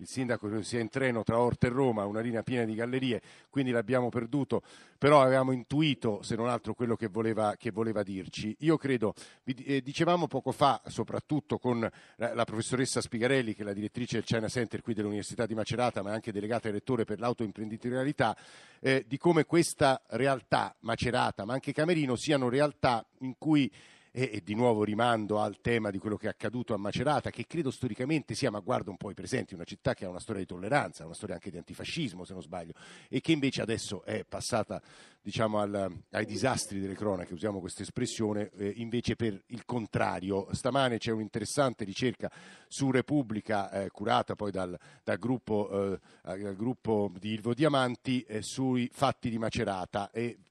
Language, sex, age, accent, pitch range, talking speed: Italian, male, 50-69, native, 105-130 Hz, 180 wpm